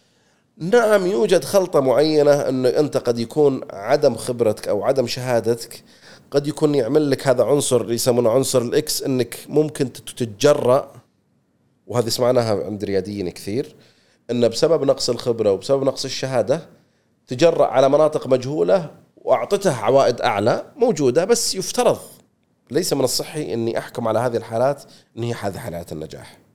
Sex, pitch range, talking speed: male, 110-150 Hz, 135 wpm